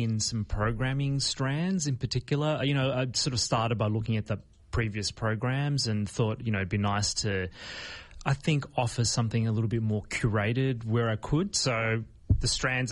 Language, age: English, 30-49